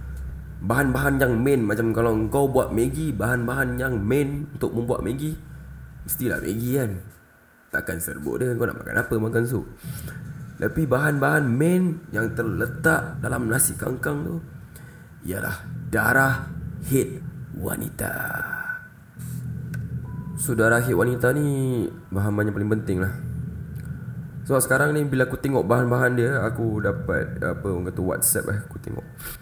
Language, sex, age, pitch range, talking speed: Malay, male, 20-39, 105-140 Hz, 135 wpm